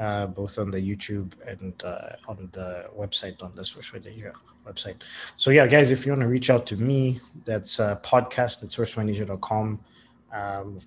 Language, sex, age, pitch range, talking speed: English, male, 20-39, 100-110 Hz, 175 wpm